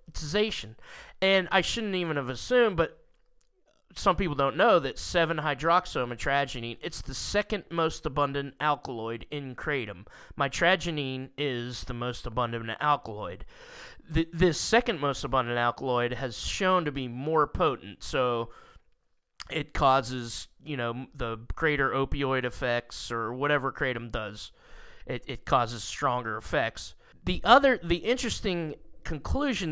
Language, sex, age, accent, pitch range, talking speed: English, male, 20-39, American, 130-175 Hz, 125 wpm